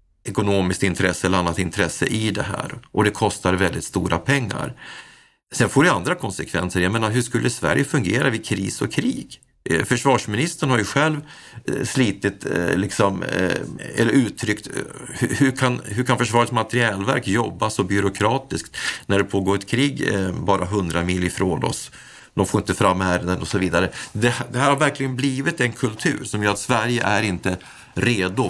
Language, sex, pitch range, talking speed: Swedish, male, 95-125 Hz, 165 wpm